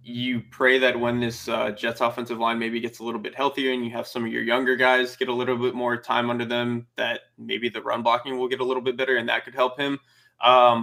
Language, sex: English, male